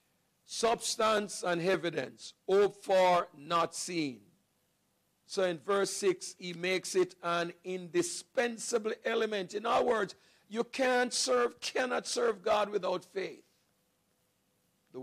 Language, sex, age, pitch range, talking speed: English, male, 50-69, 145-205 Hz, 115 wpm